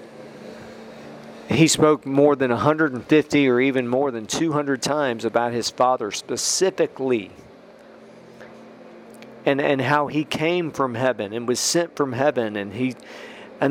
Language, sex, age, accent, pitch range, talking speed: English, male, 40-59, American, 125-155 Hz, 130 wpm